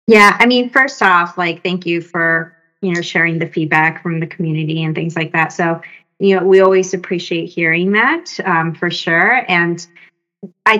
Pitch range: 170-195 Hz